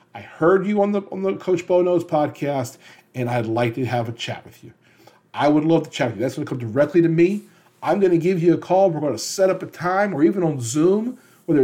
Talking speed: 270 wpm